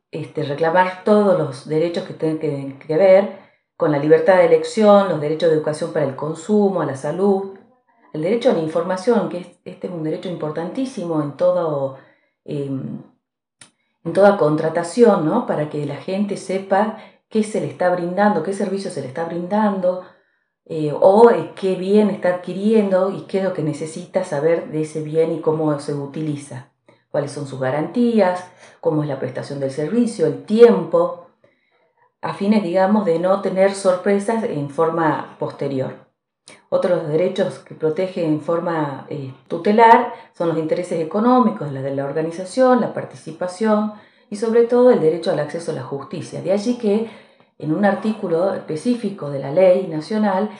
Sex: female